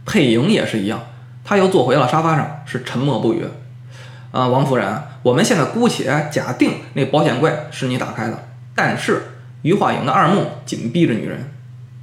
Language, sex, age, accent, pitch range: Chinese, male, 20-39, native, 125-160 Hz